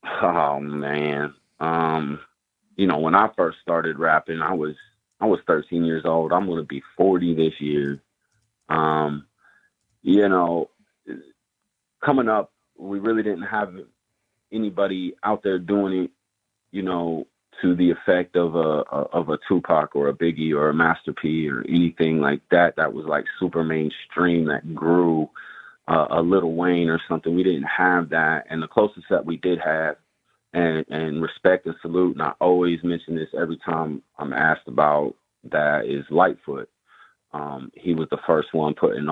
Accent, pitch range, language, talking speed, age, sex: American, 75-90 Hz, English, 165 wpm, 30-49, male